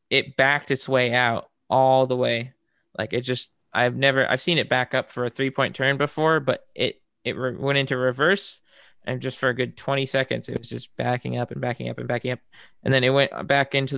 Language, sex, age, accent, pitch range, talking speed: English, male, 20-39, American, 115-135 Hz, 230 wpm